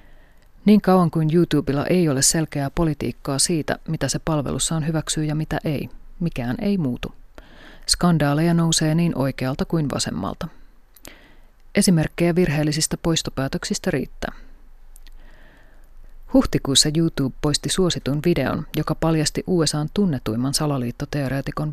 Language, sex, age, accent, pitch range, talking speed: Finnish, female, 30-49, native, 135-170 Hz, 110 wpm